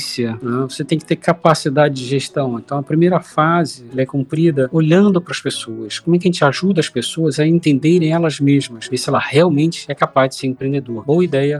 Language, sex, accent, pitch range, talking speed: Portuguese, male, Brazilian, 125-160 Hz, 210 wpm